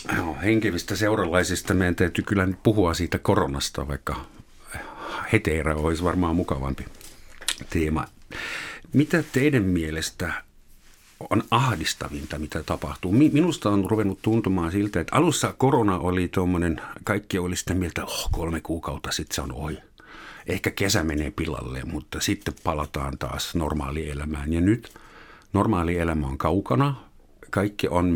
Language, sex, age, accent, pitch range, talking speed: Finnish, male, 50-69, native, 80-105 Hz, 130 wpm